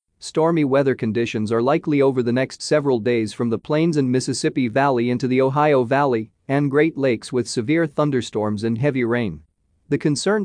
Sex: male